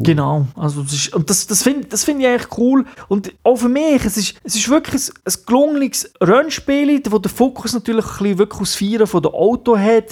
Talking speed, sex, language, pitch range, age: 230 wpm, male, German, 160-215 Hz, 30-49